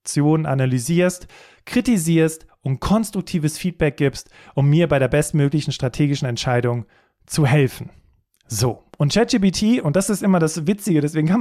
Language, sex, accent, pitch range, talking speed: German, male, German, 140-185 Hz, 135 wpm